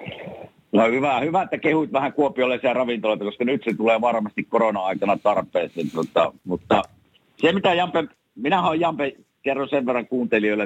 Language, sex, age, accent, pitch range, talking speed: Finnish, male, 50-69, native, 105-140 Hz, 150 wpm